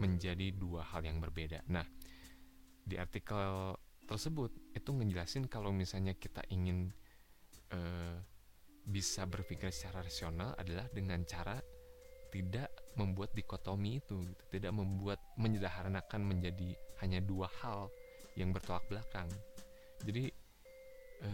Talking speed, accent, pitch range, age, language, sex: 110 wpm, native, 85-105 Hz, 20-39, Indonesian, male